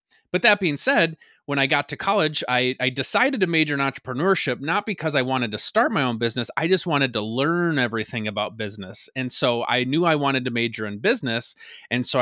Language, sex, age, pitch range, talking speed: English, male, 30-49, 115-140 Hz, 220 wpm